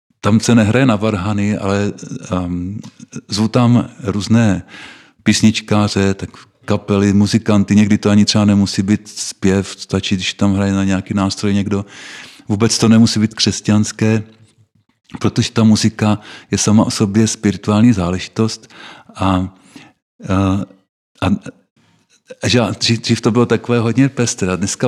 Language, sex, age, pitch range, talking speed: Slovak, male, 50-69, 100-115 Hz, 130 wpm